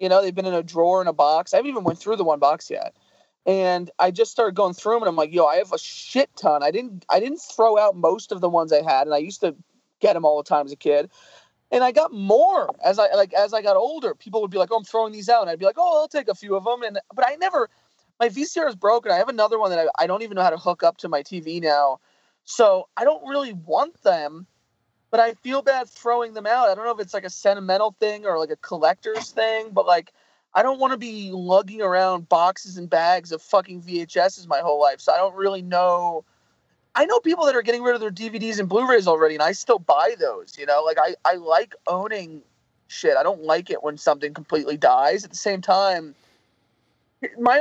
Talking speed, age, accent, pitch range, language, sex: 260 wpm, 30-49, American, 175-240 Hz, English, male